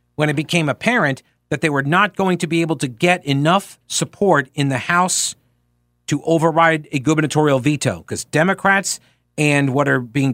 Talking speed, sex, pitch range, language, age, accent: 175 wpm, male, 130-180 Hz, English, 50-69, American